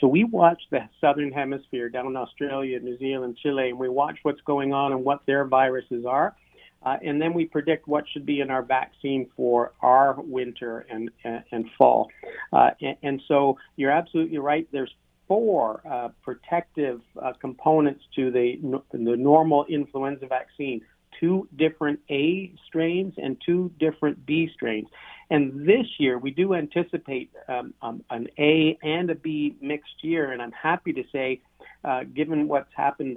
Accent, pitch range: American, 130-155 Hz